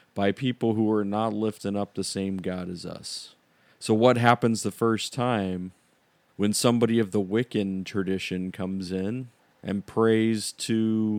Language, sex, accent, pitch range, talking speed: English, male, American, 100-125 Hz, 155 wpm